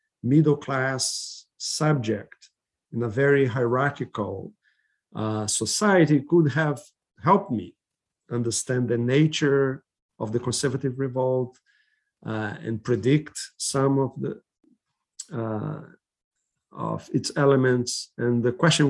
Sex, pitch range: male, 120-145 Hz